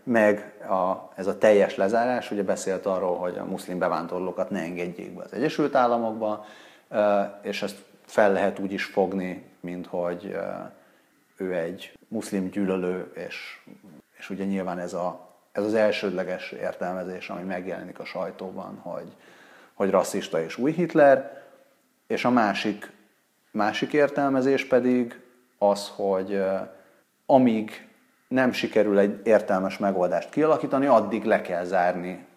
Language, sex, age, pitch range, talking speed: Hungarian, male, 30-49, 95-125 Hz, 130 wpm